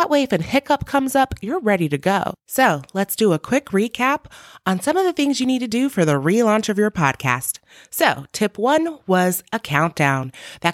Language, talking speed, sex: English, 220 wpm, female